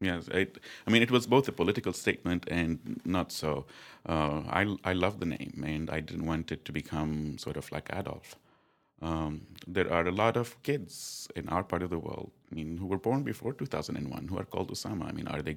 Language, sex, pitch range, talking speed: English, male, 85-115 Hz, 225 wpm